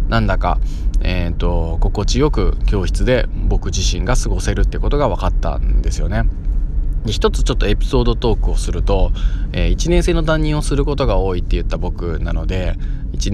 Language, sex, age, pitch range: Japanese, male, 20-39, 85-110 Hz